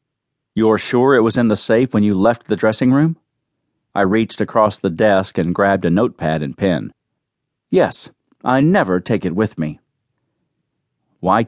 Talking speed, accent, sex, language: 165 wpm, American, male, English